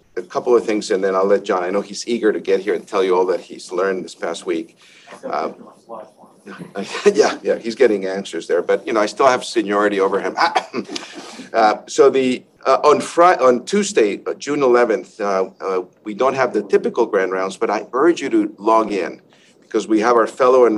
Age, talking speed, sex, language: 50-69, 215 wpm, male, English